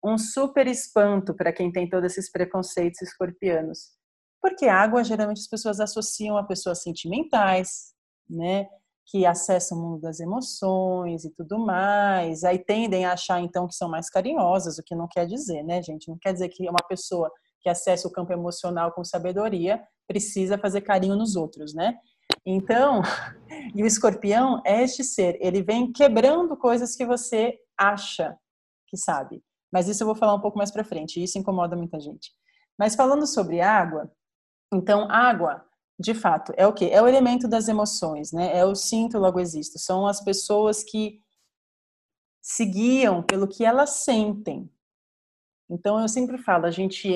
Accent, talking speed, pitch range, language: Brazilian, 165 wpm, 180-225 Hz, Portuguese